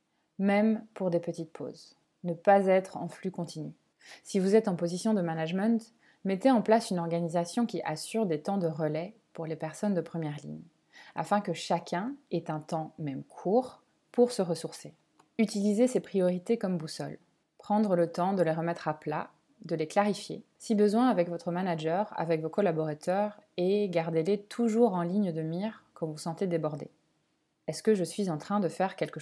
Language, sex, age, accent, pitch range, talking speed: French, female, 20-39, French, 165-205 Hz, 185 wpm